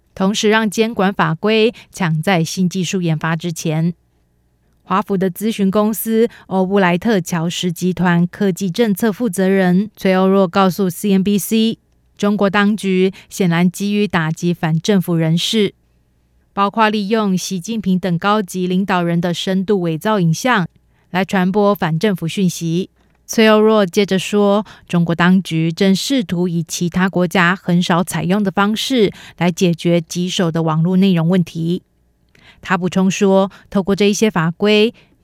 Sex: female